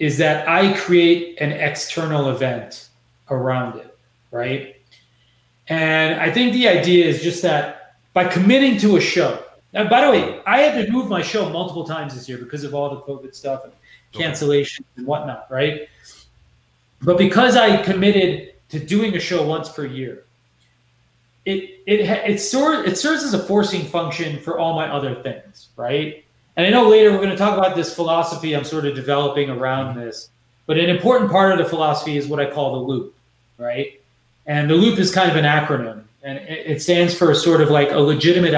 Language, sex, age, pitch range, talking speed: English, male, 30-49, 140-185 Hz, 190 wpm